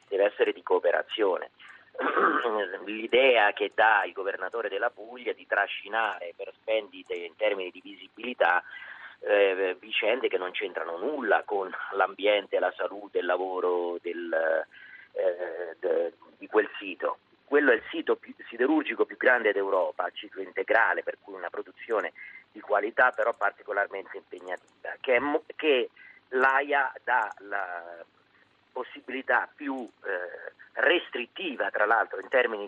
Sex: male